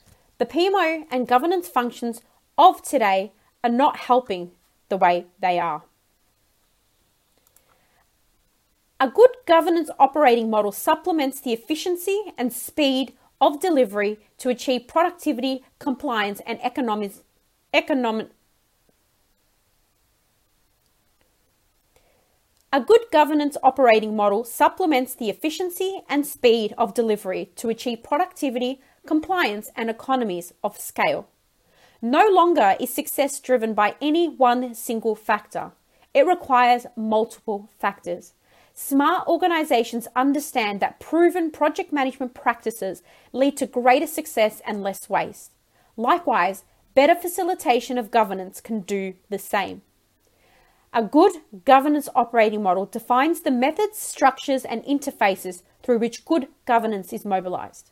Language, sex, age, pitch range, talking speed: English, female, 30-49, 215-300 Hz, 110 wpm